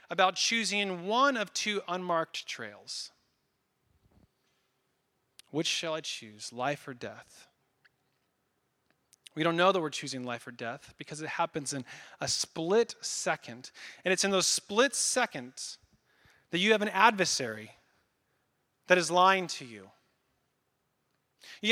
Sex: male